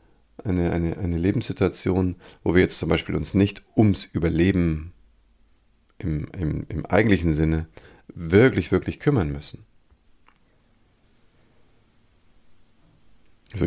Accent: German